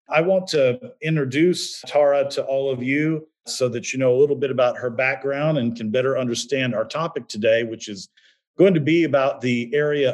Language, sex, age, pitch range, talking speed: English, male, 50-69, 115-145 Hz, 200 wpm